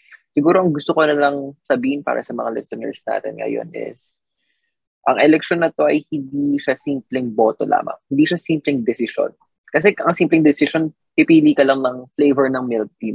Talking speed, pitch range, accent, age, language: 185 wpm, 120-160 Hz, native, 20-39, Filipino